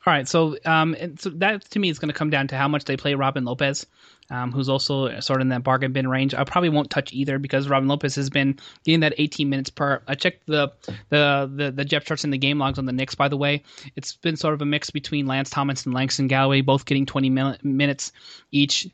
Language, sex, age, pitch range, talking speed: English, male, 20-39, 135-155 Hz, 255 wpm